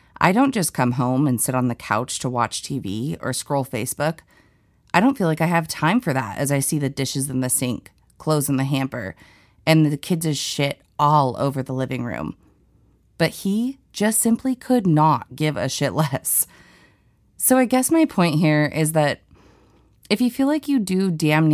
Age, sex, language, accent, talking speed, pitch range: 30-49, female, English, American, 200 wpm, 135-180 Hz